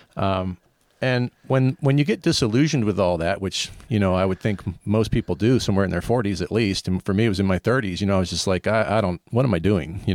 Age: 40-59